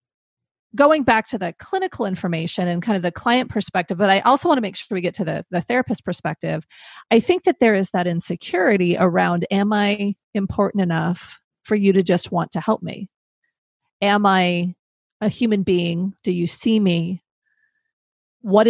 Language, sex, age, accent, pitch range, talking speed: English, female, 40-59, American, 175-225 Hz, 180 wpm